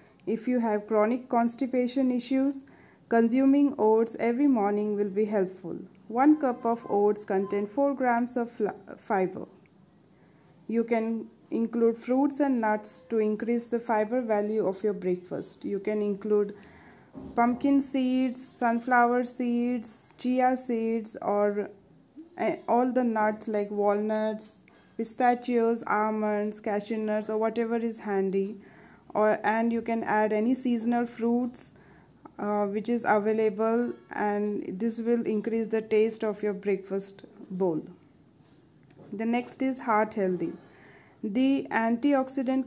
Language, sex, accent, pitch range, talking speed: English, female, Indian, 210-245 Hz, 125 wpm